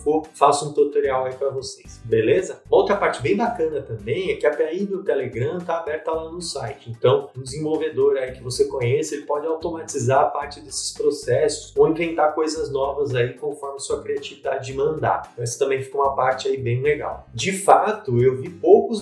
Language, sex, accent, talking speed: Portuguese, male, Brazilian, 195 wpm